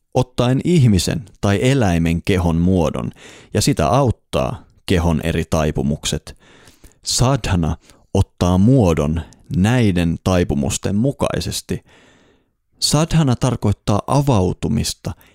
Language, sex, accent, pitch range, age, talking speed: Finnish, male, native, 80-105 Hz, 30-49, 80 wpm